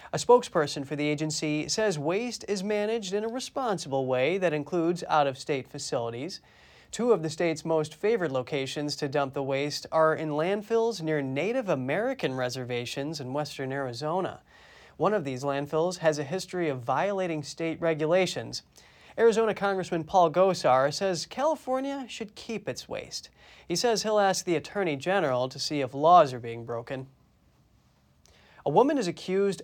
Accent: American